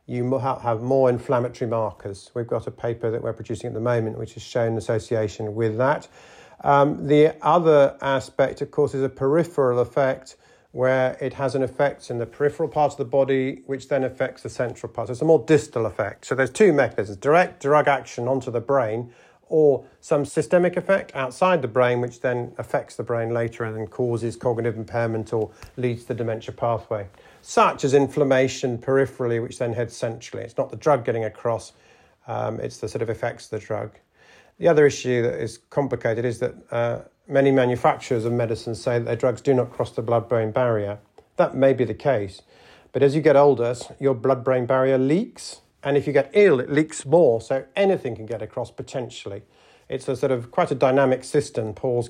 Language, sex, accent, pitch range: English, male, British, 115-140 Hz